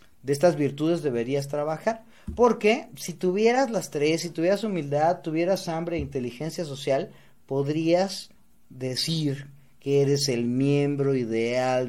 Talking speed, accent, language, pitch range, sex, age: 125 wpm, Mexican, Spanish, 140-175 Hz, male, 30-49